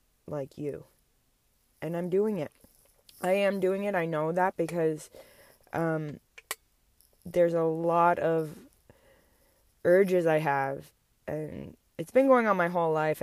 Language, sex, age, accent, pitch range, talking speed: English, female, 20-39, American, 150-170 Hz, 135 wpm